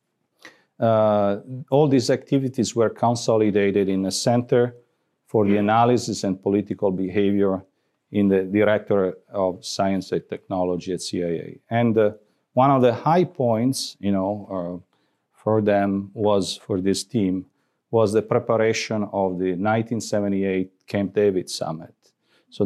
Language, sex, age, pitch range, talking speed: English, male, 40-59, 95-115 Hz, 130 wpm